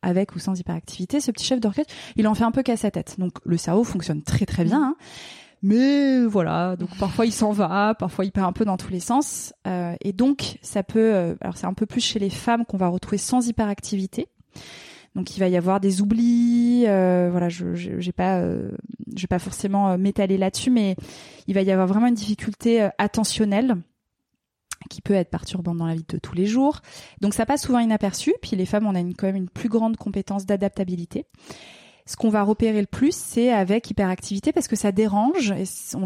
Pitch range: 185-225 Hz